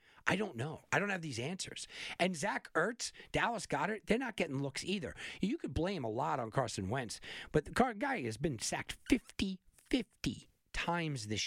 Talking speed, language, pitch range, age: 190 wpm, English, 110-155 Hz, 40-59